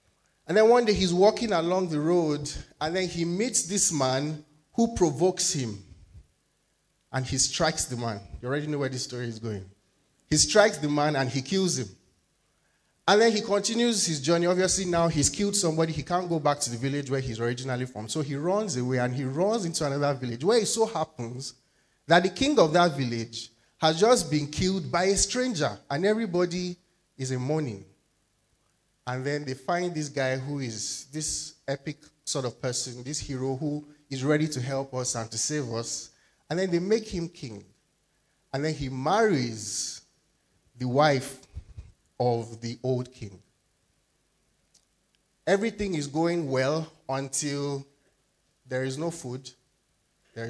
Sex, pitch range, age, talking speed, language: male, 125-170 Hz, 30-49, 170 wpm, English